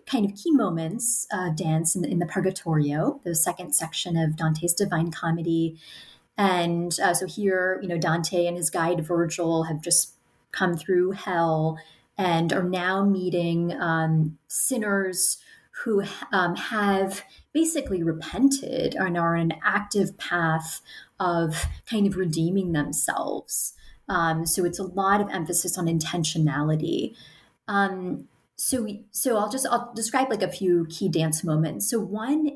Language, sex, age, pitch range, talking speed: English, female, 30-49, 165-200 Hz, 150 wpm